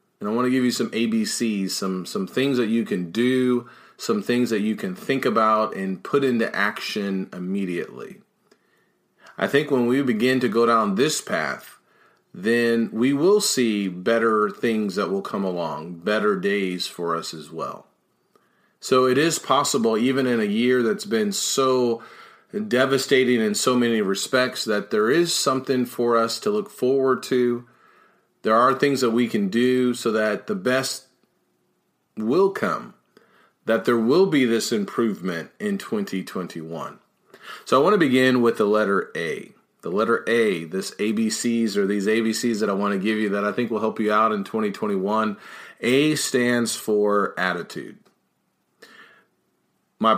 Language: English